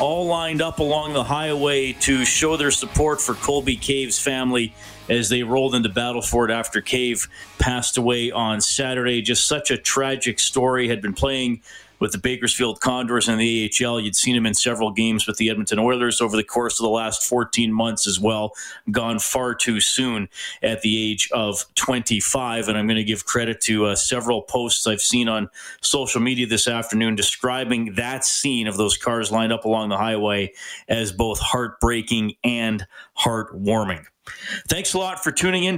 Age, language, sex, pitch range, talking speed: 30-49, English, male, 115-140 Hz, 180 wpm